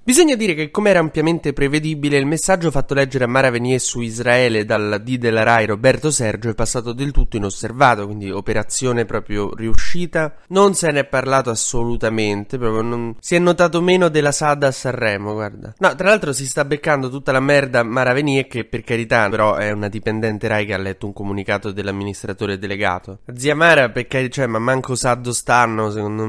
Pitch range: 110-130 Hz